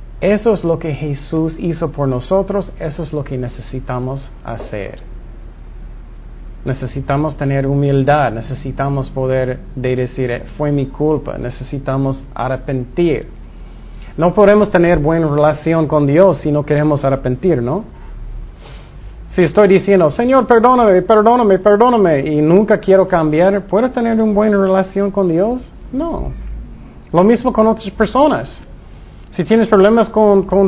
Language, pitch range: Spanish, 130-195 Hz